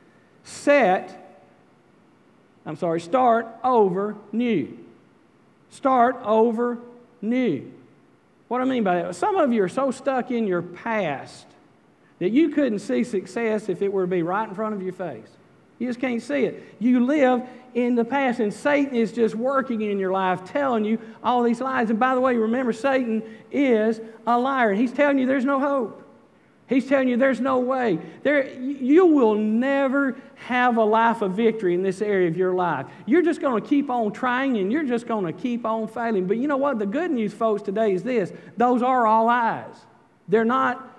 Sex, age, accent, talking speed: male, 50-69, American, 190 wpm